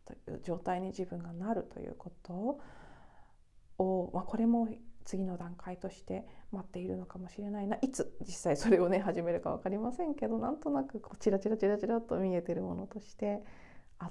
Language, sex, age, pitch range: Japanese, female, 40-59, 175-230 Hz